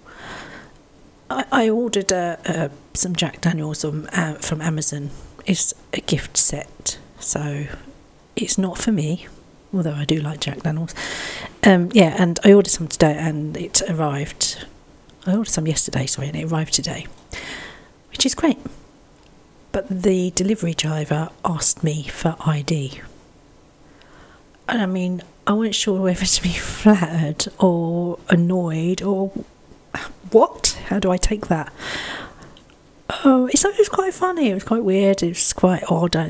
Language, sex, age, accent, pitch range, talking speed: English, female, 40-59, British, 155-200 Hz, 150 wpm